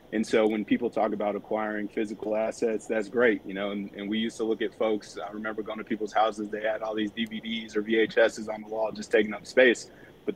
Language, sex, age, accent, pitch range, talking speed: English, male, 30-49, American, 100-110 Hz, 245 wpm